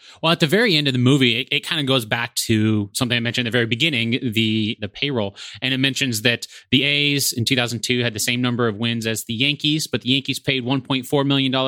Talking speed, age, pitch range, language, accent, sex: 240 wpm, 30-49, 110-135 Hz, English, American, male